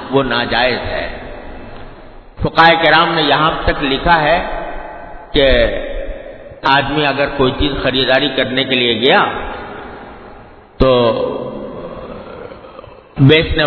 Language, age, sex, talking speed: English, 50-69, male, 95 wpm